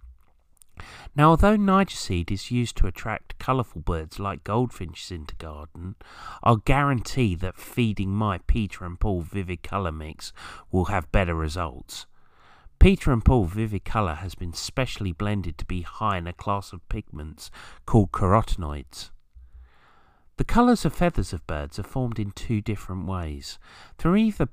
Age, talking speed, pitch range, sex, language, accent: 40-59, 150 wpm, 85-125 Hz, male, English, British